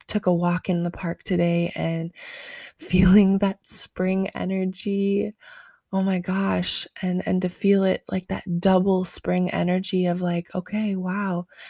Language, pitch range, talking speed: English, 175-195 Hz, 150 wpm